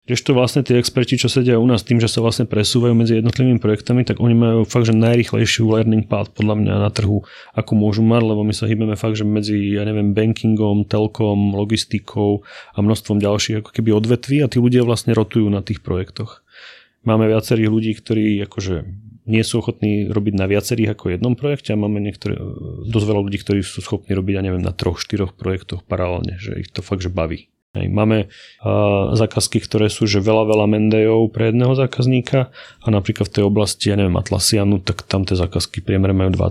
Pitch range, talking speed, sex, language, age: 100-115 Hz, 195 wpm, male, Slovak, 30-49